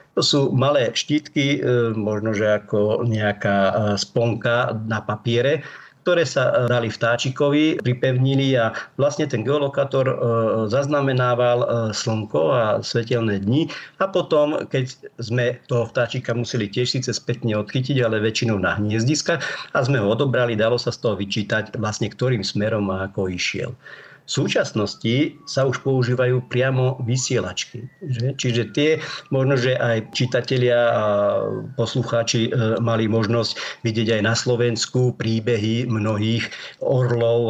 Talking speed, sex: 125 wpm, male